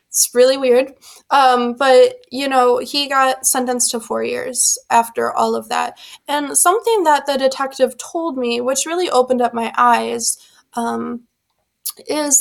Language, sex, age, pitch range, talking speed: English, female, 20-39, 240-280 Hz, 155 wpm